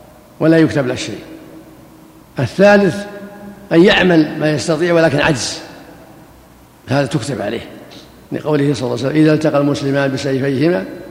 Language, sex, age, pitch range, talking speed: Arabic, male, 60-79, 135-155 Hz, 120 wpm